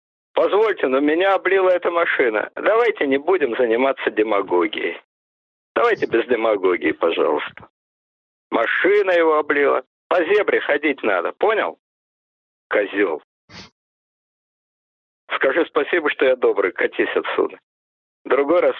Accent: native